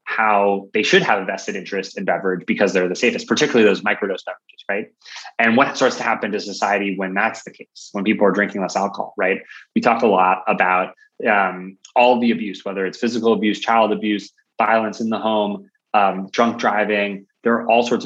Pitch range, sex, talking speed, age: 100-115 Hz, male, 205 wpm, 20-39